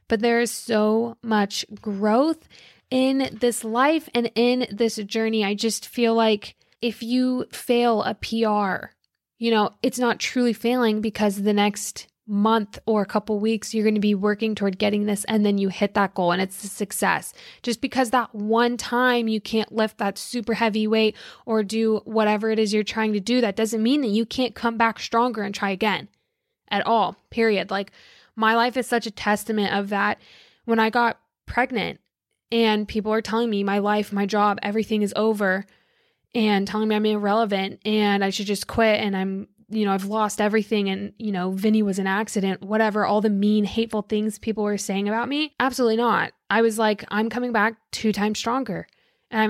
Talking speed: 200 wpm